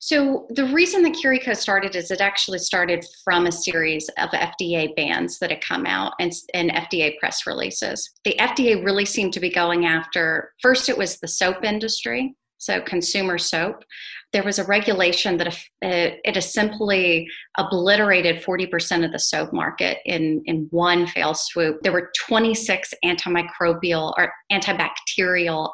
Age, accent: 30-49, American